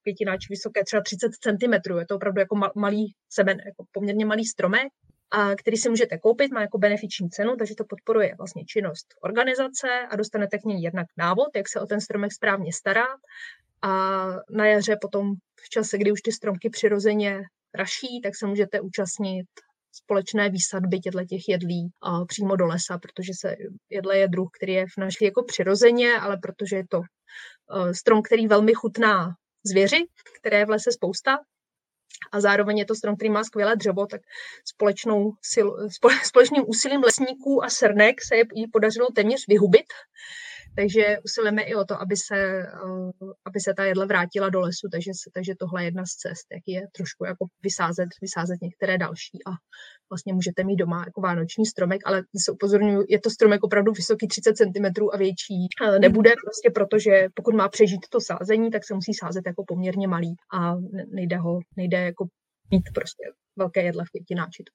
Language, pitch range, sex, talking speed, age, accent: Czech, 185-220 Hz, female, 175 wpm, 20-39, native